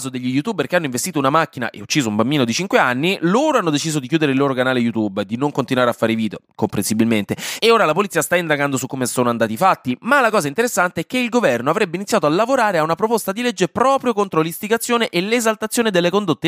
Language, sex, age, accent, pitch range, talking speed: Italian, male, 20-39, native, 115-195 Hz, 240 wpm